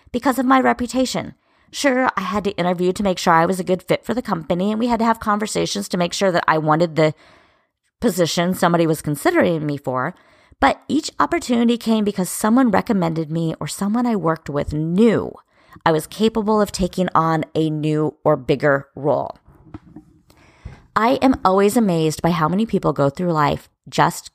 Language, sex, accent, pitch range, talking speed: English, female, American, 160-230 Hz, 185 wpm